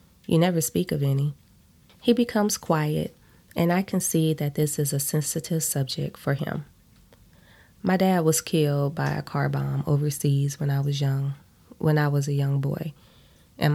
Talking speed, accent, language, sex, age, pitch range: 175 wpm, American, English, female, 20-39, 140-175 Hz